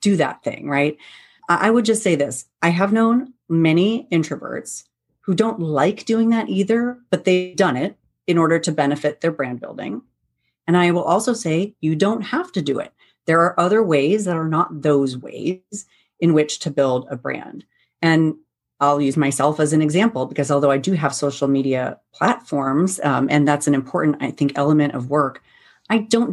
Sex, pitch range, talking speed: female, 145-190 Hz, 190 wpm